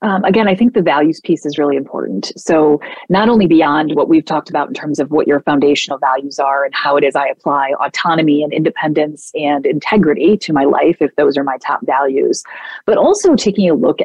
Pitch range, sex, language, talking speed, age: 145-185 Hz, female, English, 220 wpm, 30-49